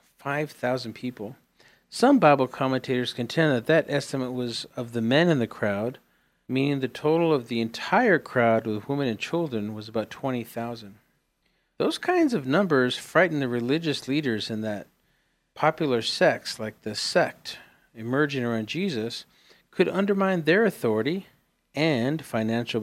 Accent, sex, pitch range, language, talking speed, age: American, male, 115-155 Hz, English, 145 wpm, 50-69